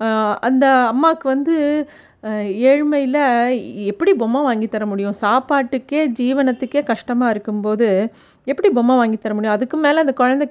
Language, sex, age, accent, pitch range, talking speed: Tamil, female, 30-49, native, 225-280 Hz, 115 wpm